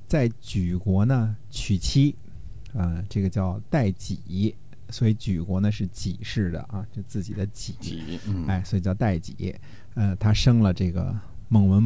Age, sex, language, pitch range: 50-69, male, Chinese, 95-115 Hz